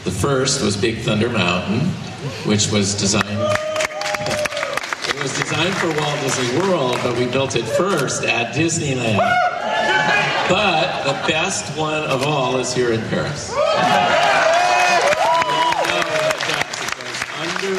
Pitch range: 95-125 Hz